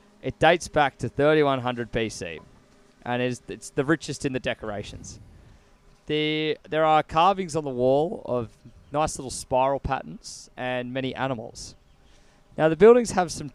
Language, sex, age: English, male, 20-39